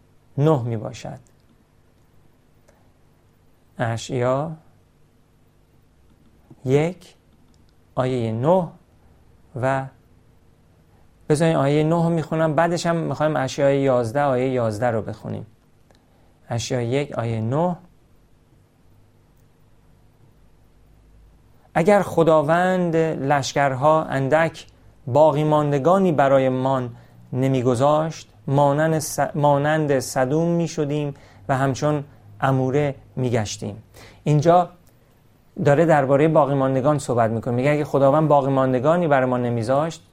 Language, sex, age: Persian, male, 40-59